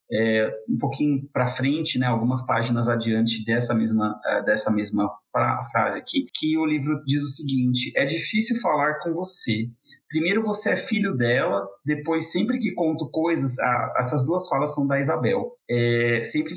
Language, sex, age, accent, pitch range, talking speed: Portuguese, male, 30-49, Brazilian, 120-155 Hz, 160 wpm